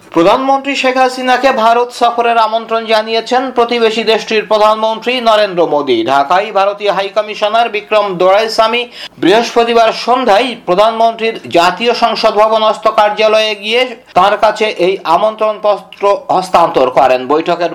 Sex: male